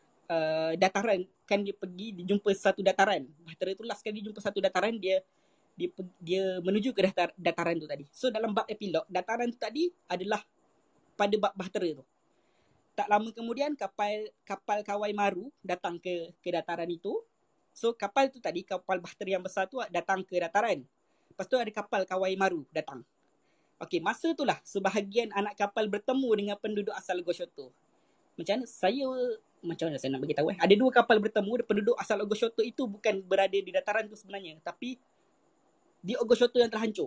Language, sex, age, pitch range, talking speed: Malay, female, 20-39, 185-230 Hz, 170 wpm